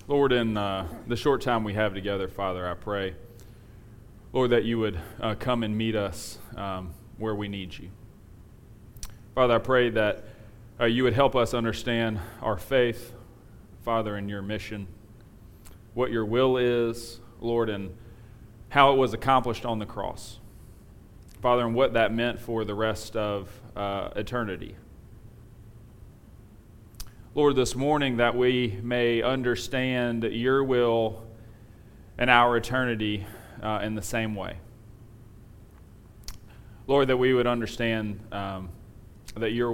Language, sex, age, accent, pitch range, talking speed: English, male, 30-49, American, 105-120 Hz, 135 wpm